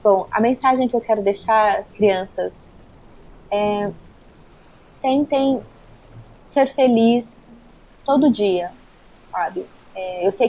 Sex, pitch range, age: female, 205-240 Hz, 20-39